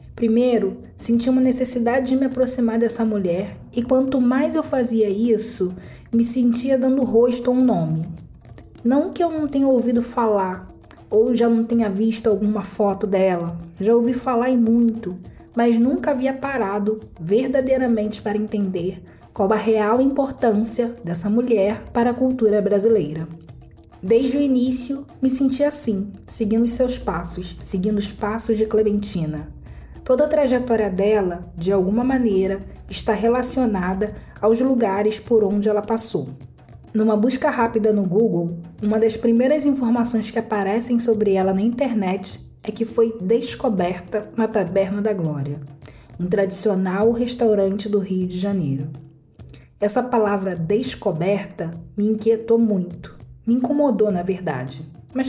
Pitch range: 195-245 Hz